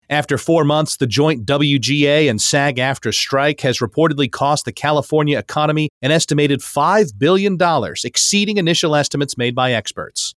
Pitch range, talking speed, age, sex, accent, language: 125-155 Hz, 150 wpm, 40-59, male, American, English